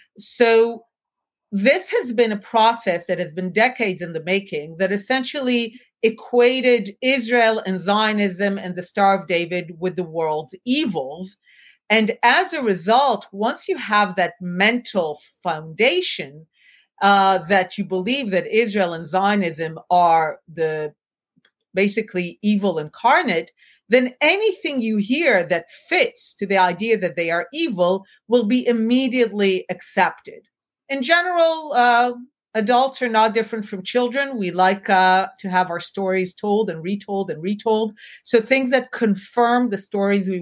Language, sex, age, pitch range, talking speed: English, female, 40-59, 185-240 Hz, 145 wpm